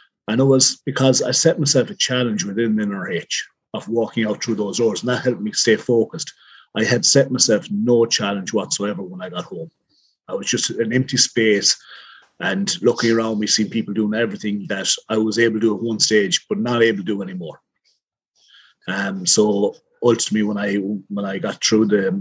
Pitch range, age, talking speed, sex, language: 105-140 Hz, 30-49, 205 wpm, male, English